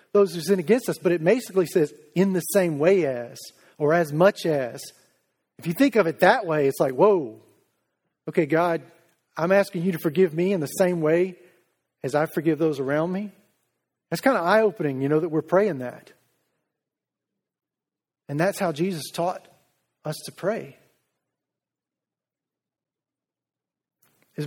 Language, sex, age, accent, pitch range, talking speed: English, male, 40-59, American, 165-210 Hz, 160 wpm